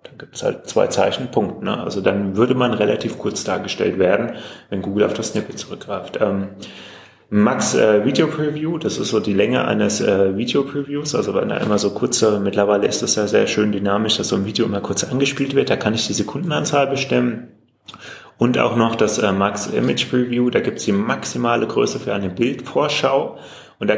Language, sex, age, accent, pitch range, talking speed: German, male, 30-49, German, 100-130 Hz, 205 wpm